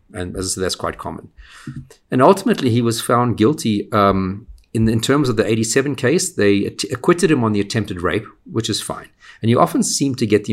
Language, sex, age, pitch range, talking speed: English, male, 50-69, 95-115 Hz, 215 wpm